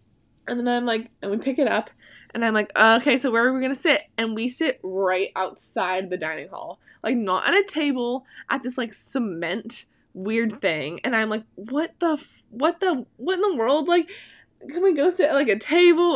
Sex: female